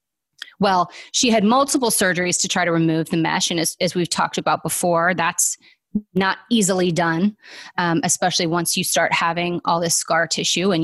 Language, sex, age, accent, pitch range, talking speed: English, female, 20-39, American, 170-215 Hz, 195 wpm